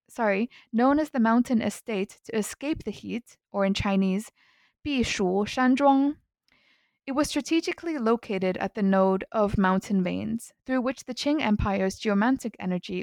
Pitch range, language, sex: 195-255 Hz, English, female